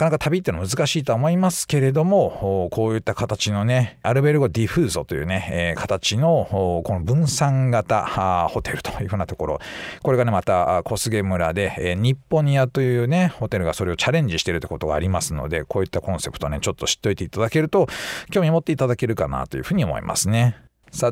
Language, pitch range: Japanese, 95-150 Hz